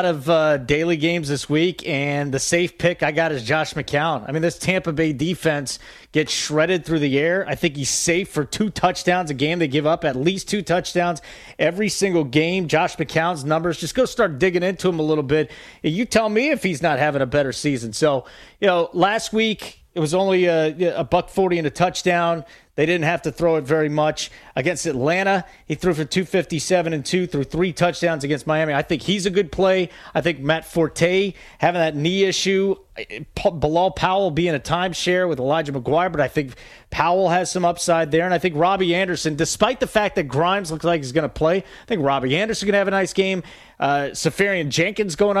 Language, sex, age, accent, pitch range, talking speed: English, male, 30-49, American, 155-185 Hz, 215 wpm